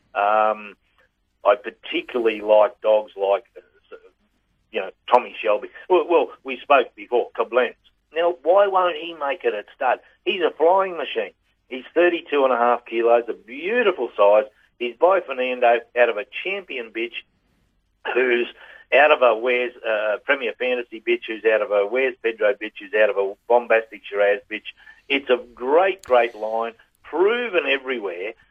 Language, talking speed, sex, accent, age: English, 160 wpm, male, Australian, 50-69